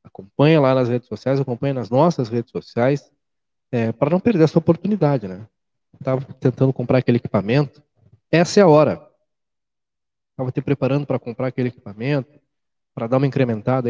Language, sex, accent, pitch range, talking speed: Portuguese, male, Brazilian, 125-160 Hz, 160 wpm